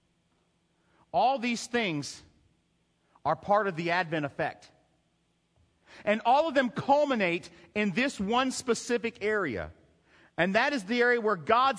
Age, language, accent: 40-59, English, American